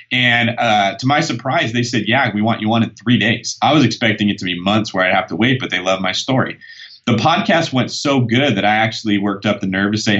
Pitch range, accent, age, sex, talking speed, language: 100-120 Hz, American, 30-49, male, 270 wpm, English